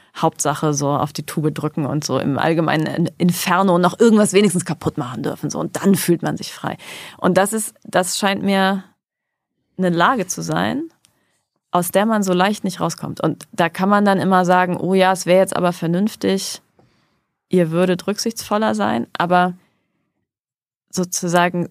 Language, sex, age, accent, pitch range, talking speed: German, female, 30-49, German, 160-190 Hz, 170 wpm